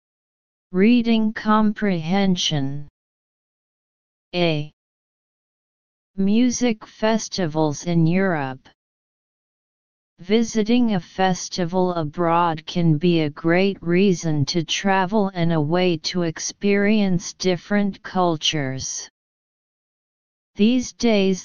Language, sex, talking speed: English, female, 75 wpm